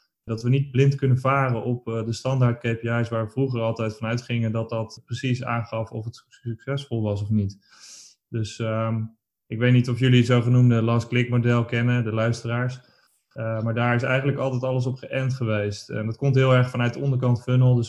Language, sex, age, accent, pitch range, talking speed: Dutch, male, 20-39, Dutch, 115-130 Hz, 195 wpm